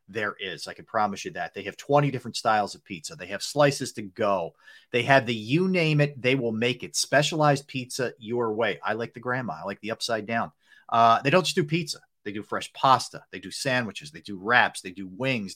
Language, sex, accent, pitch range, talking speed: English, male, American, 120-155 Hz, 235 wpm